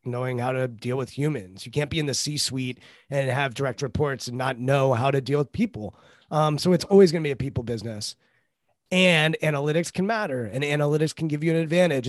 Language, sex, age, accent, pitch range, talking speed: English, male, 30-49, American, 130-155 Hz, 225 wpm